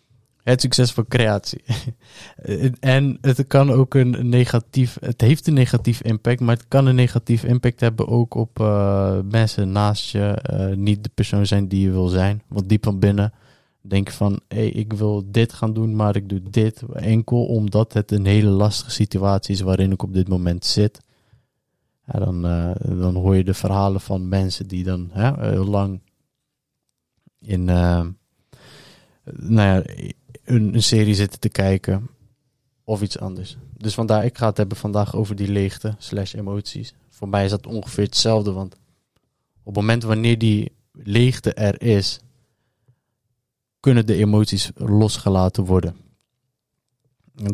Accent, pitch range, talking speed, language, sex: Dutch, 100-125 Hz, 160 wpm, Dutch, male